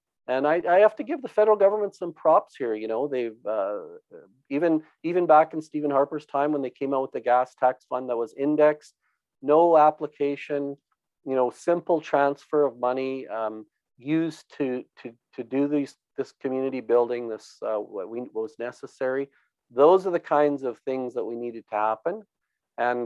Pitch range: 120-150 Hz